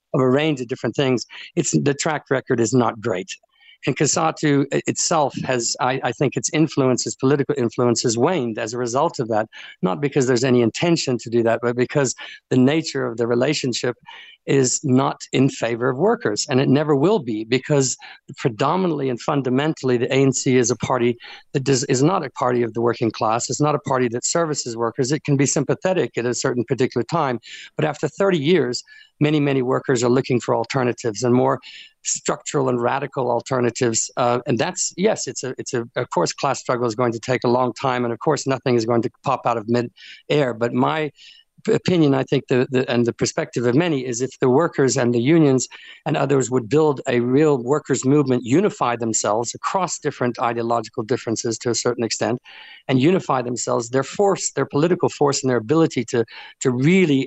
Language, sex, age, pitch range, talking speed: English, male, 50-69, 120-150 Hz, 200 wpm